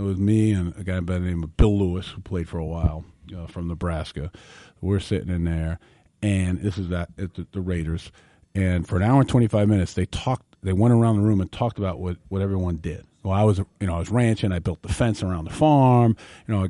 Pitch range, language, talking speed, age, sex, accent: 95-135 Hz, English, 250 wpm, 40-59, male, American